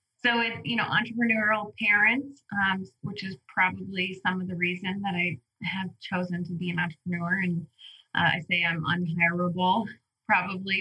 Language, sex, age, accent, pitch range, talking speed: English, female, 30-49, American, 170-190 Hz, 160 wpm